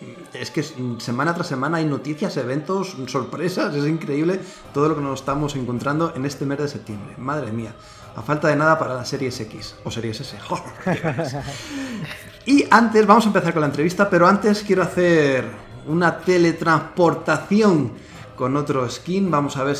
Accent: Spanish